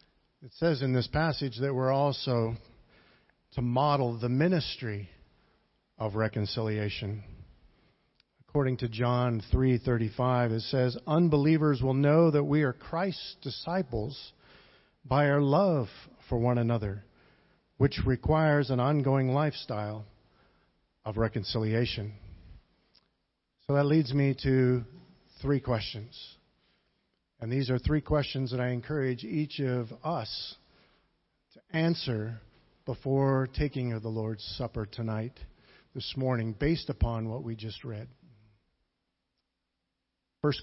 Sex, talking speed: male, 115 wpm